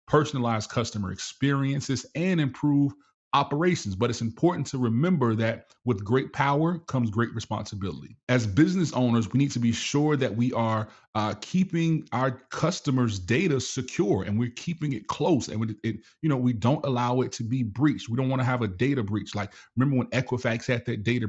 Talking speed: 185 wpm